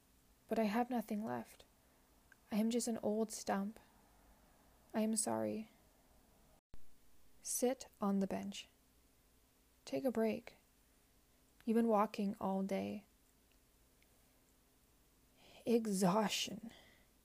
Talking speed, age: 95 wpm, 20-39